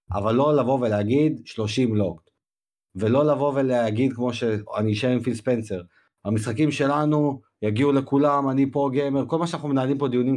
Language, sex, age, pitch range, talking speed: Hebrew, male, 30-49, 115-145 Hz, 150 wpm